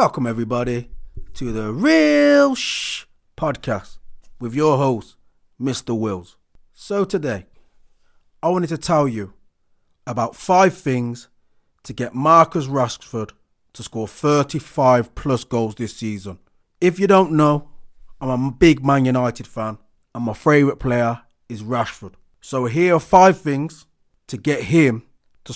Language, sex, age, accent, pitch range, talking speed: English, male, 30-49, British, 120-160 Hz, 135 wpm